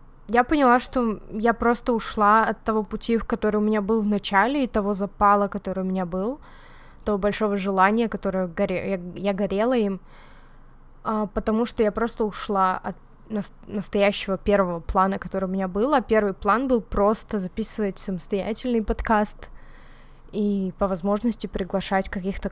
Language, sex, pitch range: Russian, female, 195-220 Hz